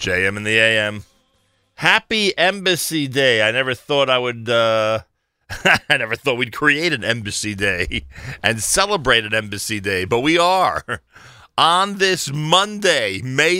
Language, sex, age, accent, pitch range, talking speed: English, male, 40-59, American, 80-110 Hz, 145 wpm